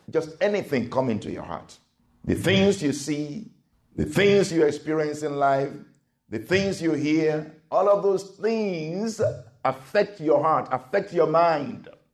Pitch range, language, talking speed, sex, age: 135-185 Hz, English, 150 wpm, male, 50-69